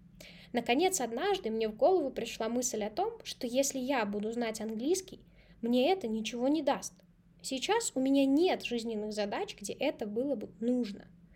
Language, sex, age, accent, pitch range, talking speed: Russian, female, 10-29, native, 215-265 Hz, 165 wpm